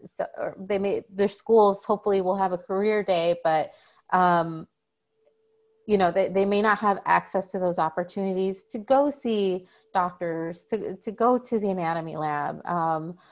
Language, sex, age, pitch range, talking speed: English, female, 30-49, 175-205 Hz, 160 wpm